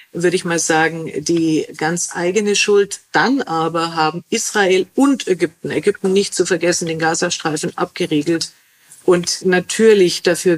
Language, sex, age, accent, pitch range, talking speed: German, female, 50-69, German, 170-200 Hz, 135 wpm